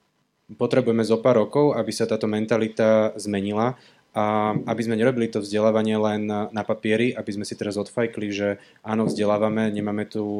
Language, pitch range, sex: Slovak, 105-110 Hz, male